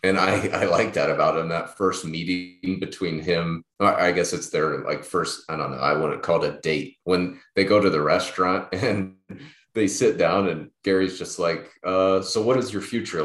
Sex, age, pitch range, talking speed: male, 30-49, 85-105 Hz, 220 wpm